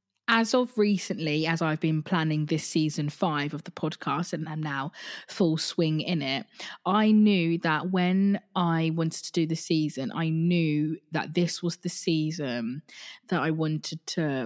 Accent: British